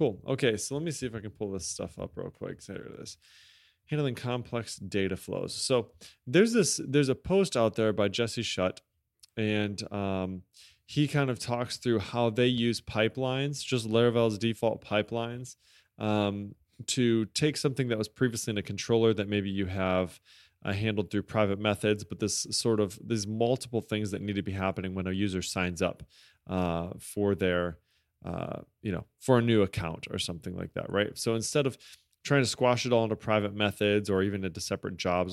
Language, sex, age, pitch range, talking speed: English, male, 20-39, 95-120 Hz, 195 wpm